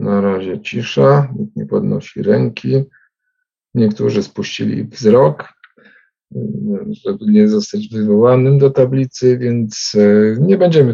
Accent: native